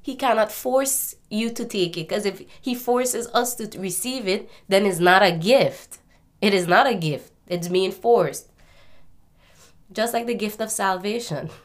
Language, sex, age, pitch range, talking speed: English, female, 20-39, 155-190 Hz, 175 wpm